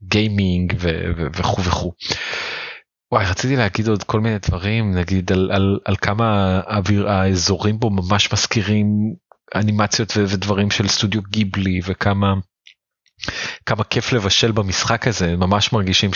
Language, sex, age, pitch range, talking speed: Hebrew, male, 30-49, 95-110 Hz, 130 wpm